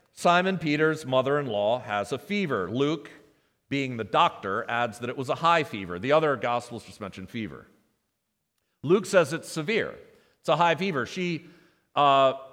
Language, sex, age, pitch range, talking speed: English, male, 40-59, 120-170 Hz, 160 wpm